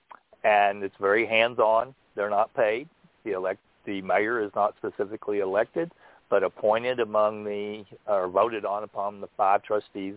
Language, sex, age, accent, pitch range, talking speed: English, male, 50-69, American, 105-130 Hz, 150 wpm